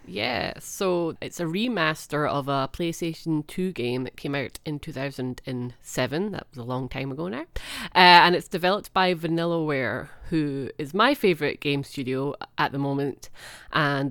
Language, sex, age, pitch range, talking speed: English, female, 30-49, 140-180 Hz, 175 wpm